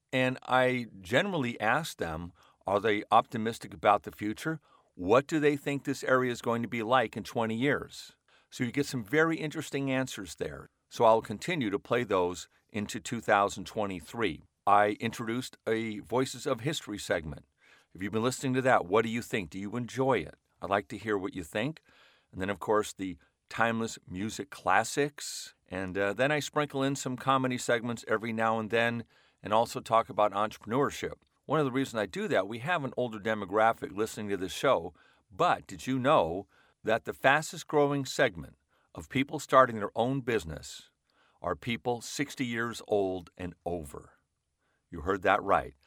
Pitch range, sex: 105-130 Hz, male